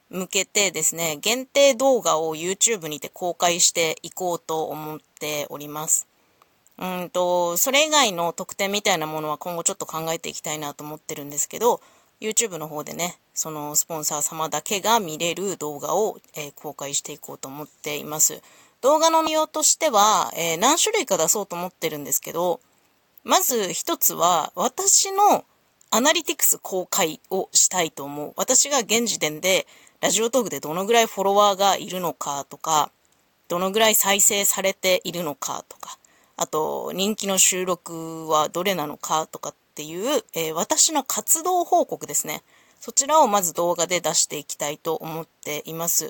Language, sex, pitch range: Japanese, female, 155-230 Hz